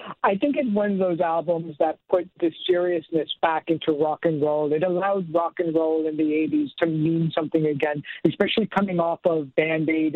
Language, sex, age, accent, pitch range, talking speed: English, male, 50-69, American, 155-190 Hz, 195 wpm